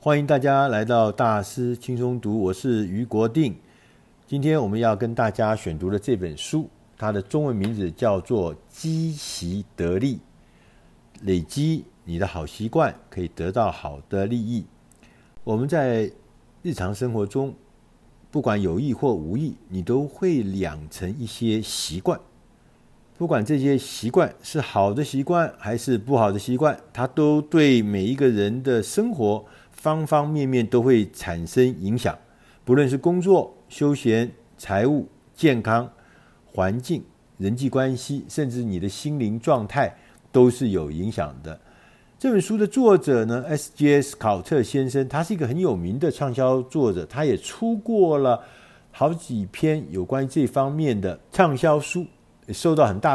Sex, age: male, 50-69